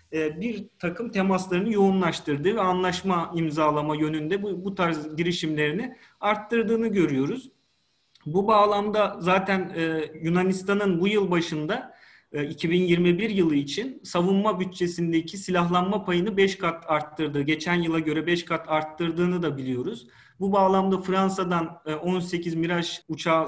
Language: Turkish